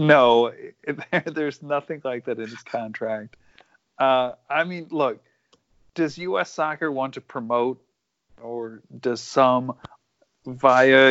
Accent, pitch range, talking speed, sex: American, 130-190 Hz, 120 wpm, male